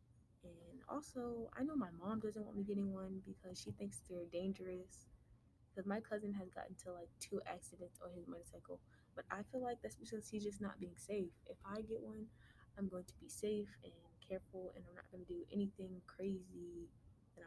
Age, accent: 20-39, American